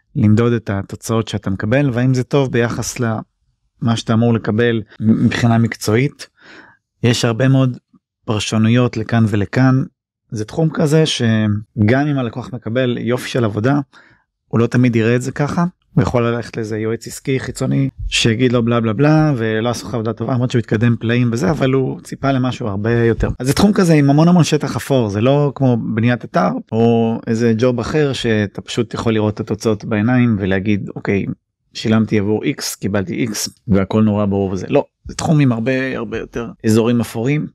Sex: male